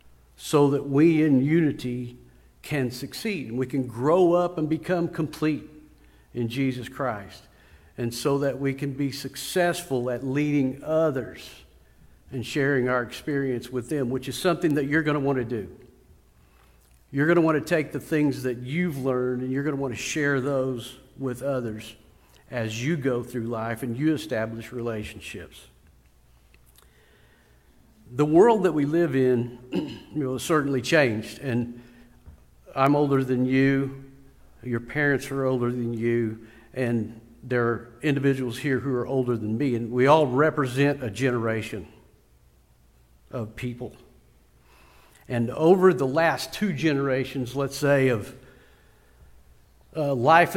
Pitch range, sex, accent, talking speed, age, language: 110-145 Hz, male, American, 150 wpm, 50-69, English